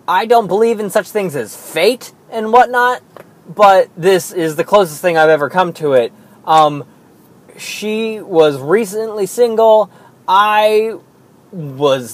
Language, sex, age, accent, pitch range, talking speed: English, male, 20-39, American, 155-215 Hz, 140 wpm